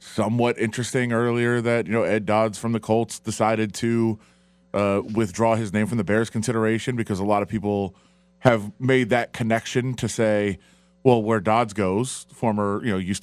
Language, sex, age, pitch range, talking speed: English, male, 30-49, 105-130 Hz, 180 wpm